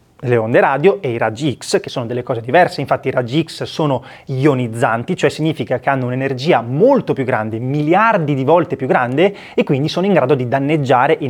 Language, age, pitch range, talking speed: Italian, 20-39, 125-175 Hz, 205 wpm